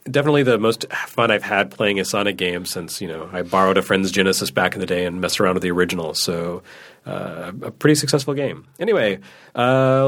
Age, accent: 40-59, American